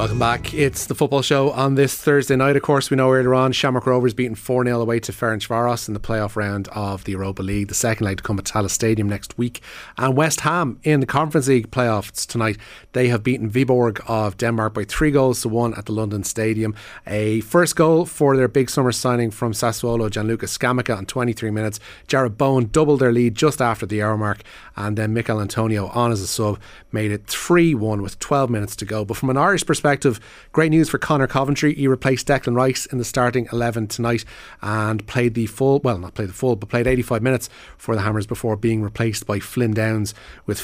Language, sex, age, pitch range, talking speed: English, male, 30-49, 105-130 Hz, 220 wpm